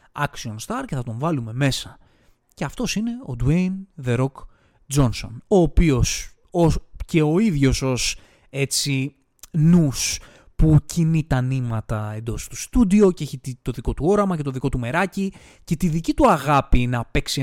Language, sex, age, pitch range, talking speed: Greek, male, 20-39, 125-160 Hz, 165 wpm